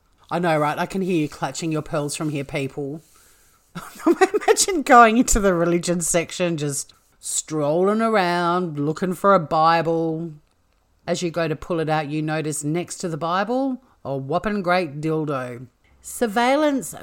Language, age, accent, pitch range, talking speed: English, 40-59, Australian, 145-200 Hz, 155 wpm